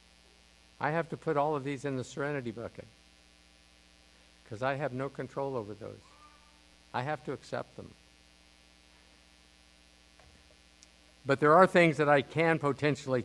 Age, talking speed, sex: 50-69, 140 wpm, male